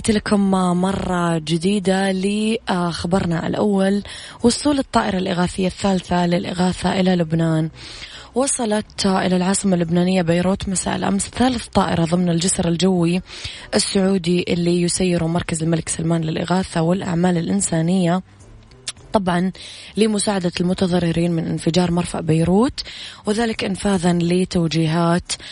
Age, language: 20-39, Arabic